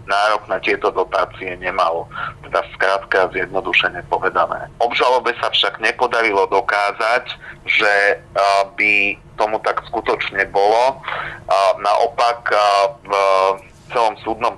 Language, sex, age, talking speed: Slovak, male, 40-59, 100 wpm